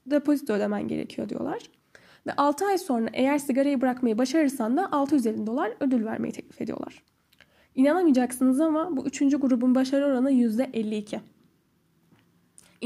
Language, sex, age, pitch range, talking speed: Turkish, female, 10-29, 230-285 Hz, 125 wpm